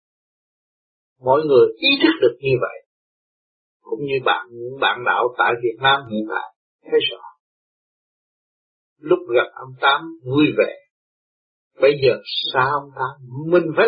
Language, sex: Vietnamese, male